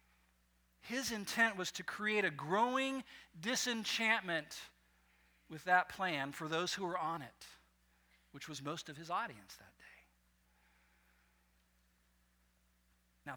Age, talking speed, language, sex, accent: 50-69, 115 wpm, English, male, American